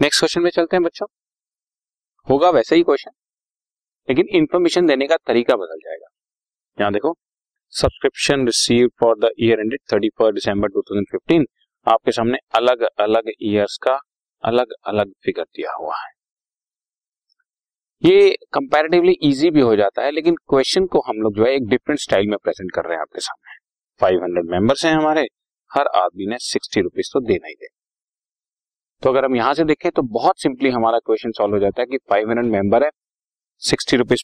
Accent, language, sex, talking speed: native, Hindi, male, 155 wpm